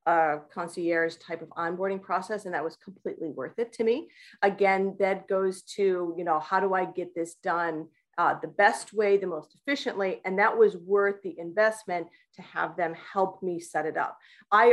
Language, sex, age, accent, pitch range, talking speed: English, female, 40-59, American, 175-210 Hz, 200 wpm